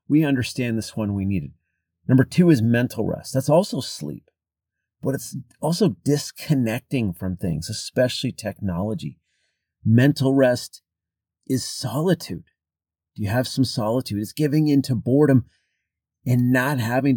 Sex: male